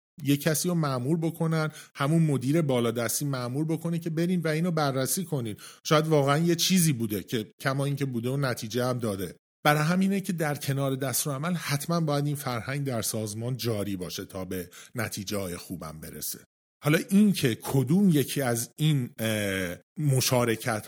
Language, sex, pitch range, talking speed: Persian, male, 115-155 Hz, 165 wpm